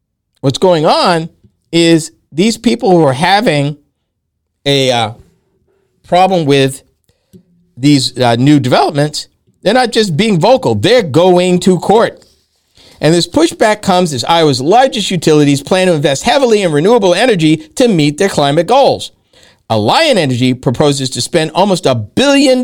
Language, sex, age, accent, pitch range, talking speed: English, male, 50-69, American, 130-200 Hz, 145 wpm